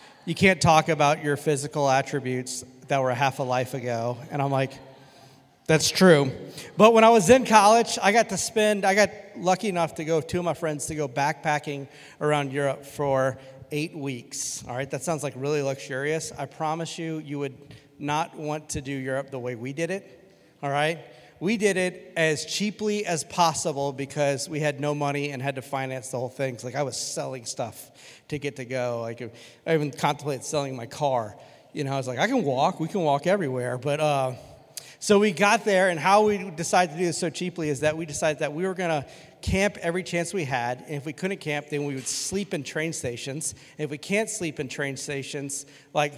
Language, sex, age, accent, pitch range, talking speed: English, male, 40-59, American, 140-175 Hz, 215 wpm